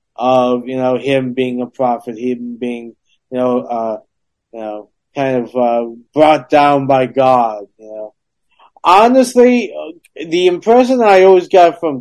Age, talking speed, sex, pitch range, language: 30-49, 150 wpm, male, 130-160 Hz, English